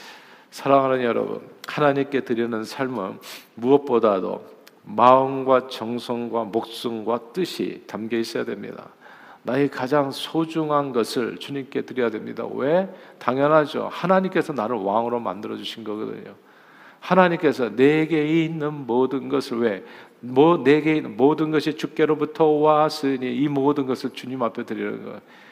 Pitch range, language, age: 125-160 Hz, Korean, 50-69